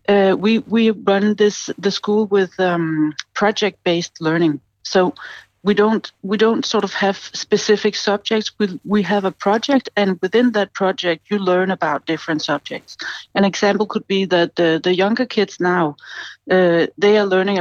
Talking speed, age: 165 wpm, 60-79